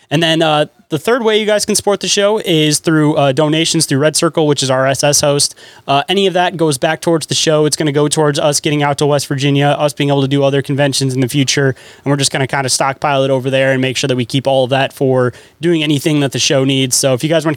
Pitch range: 135-165 Hz